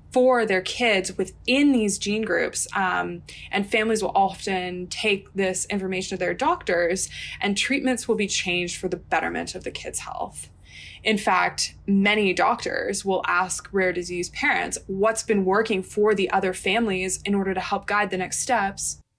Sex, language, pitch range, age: female, English, 185-210 Hz, 20-39